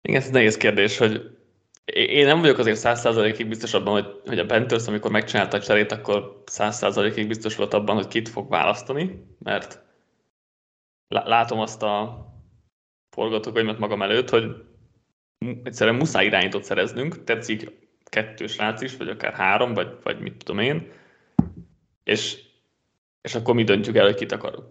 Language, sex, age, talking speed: Hungarian, male, 20-39, 155 wpm